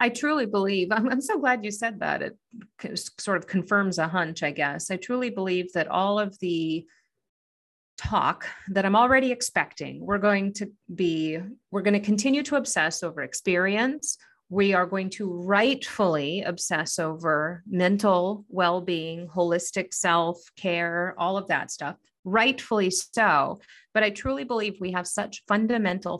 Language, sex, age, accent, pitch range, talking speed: English, female, 30-49, American, 175-210 Hz, 150 wpm